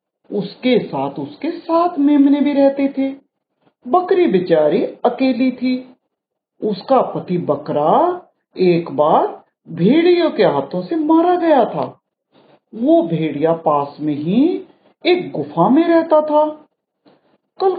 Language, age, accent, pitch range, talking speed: Hindi, 50-69, native, 195-300 Hz, 120 wpm